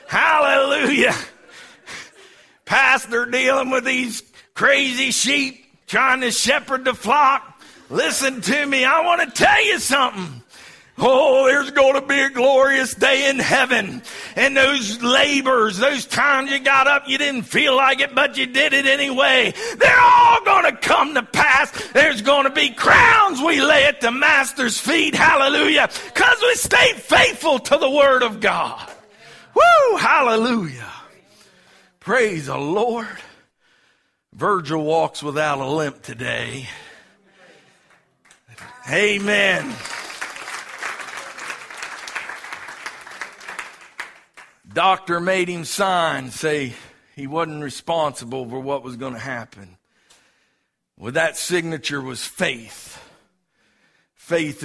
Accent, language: American, English